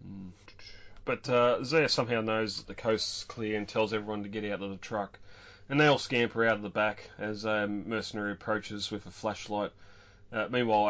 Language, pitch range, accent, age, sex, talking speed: English, 100-110 Hz, Australian, 30-49, male, 195 wpm